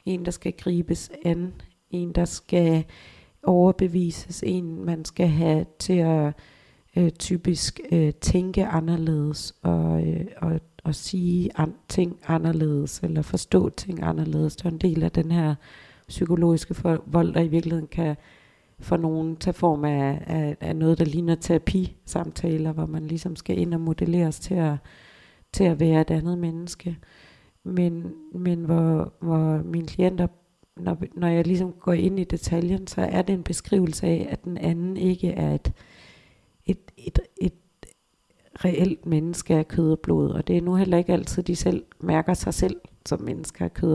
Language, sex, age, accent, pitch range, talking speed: Danish, female, 40-59, native, 160-175 Hz, 170 wpm